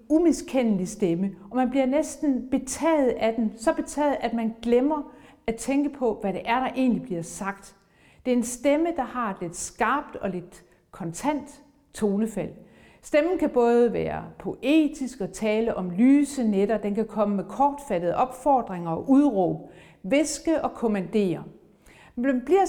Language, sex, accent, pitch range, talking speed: Danish, female, native, 200-280 Hz, 160 wpm